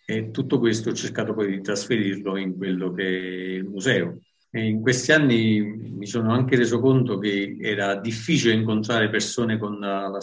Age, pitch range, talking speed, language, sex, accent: 50-69, 110-125 Hz, 165 wpm, English, male, Italian